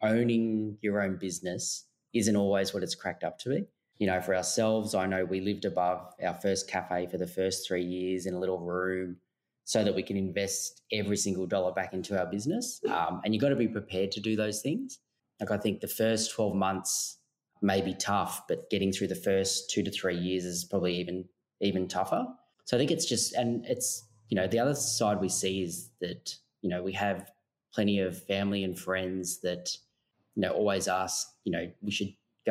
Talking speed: 210 wpm